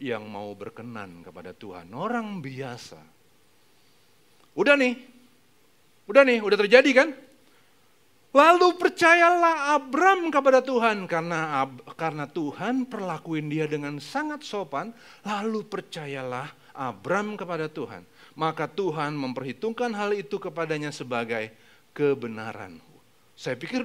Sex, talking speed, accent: male, 105 wpm, native